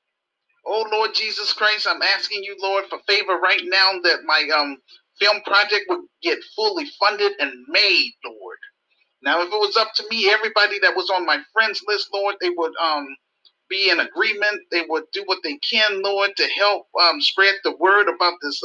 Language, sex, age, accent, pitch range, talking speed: English, male, 40-59, American, 175-225 Hz, 195 wpm